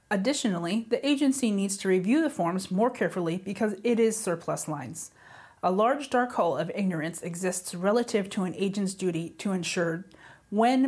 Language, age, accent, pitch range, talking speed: English, 30-49, American, 170-210 Hz, 165 wpm